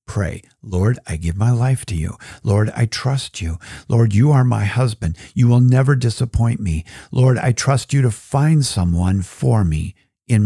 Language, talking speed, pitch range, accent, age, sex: English, 185 wpm, 95-135 Hz, American, 50-69, male